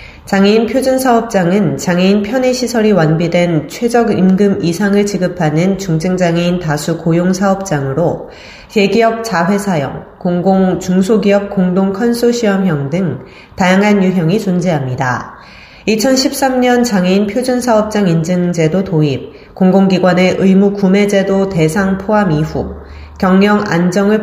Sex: female